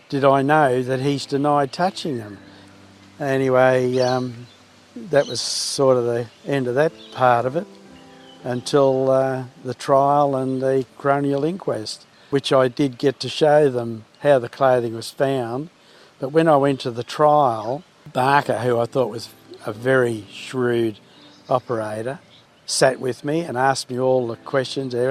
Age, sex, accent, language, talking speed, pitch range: 60-79, male, Australian, English, 160 wpm, 125-145 Hz